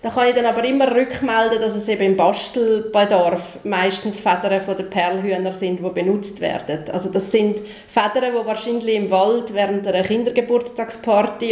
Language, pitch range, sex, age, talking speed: English, 195-245 Hz, female, 30-49, 160 wpm